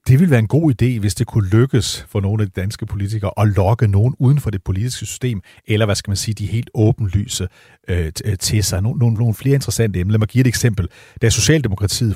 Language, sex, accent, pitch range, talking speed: Danish, male, native, 105-130 Hz, 235 wpm